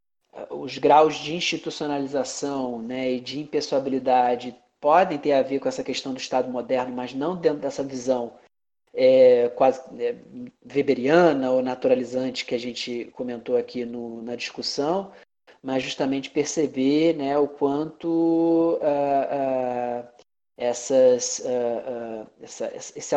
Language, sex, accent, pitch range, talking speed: Portuguese, male, Brazilian, 130-145 Hz, 105 wpm